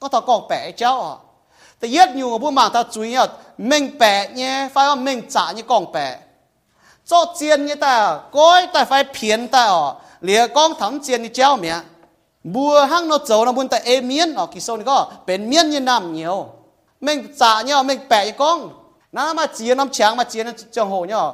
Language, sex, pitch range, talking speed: English, male, 225-295 Hz, 50 wpm